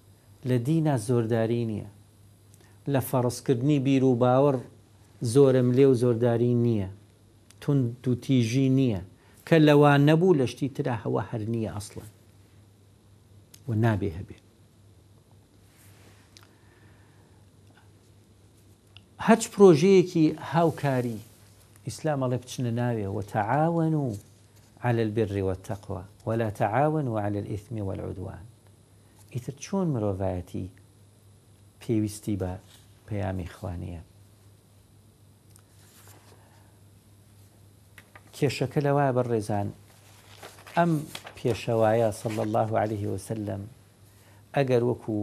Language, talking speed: English, 45 wpm